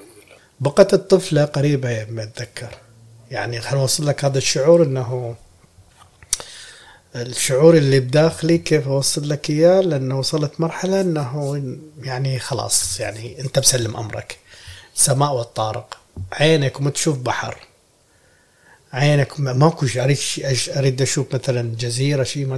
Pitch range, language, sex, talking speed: 120-145 Hz, Arabic, male, 115 wpm